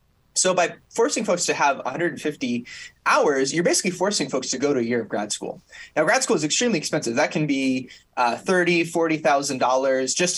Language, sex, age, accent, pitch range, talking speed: English, male, 20-39, American, 140-185 Hz, 190 wpm